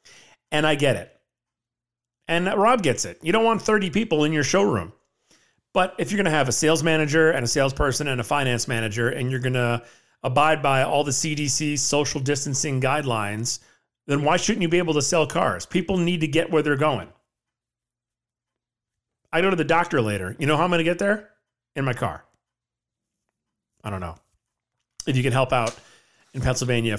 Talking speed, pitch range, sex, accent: 195 wpm, 125-155 Hz, male, American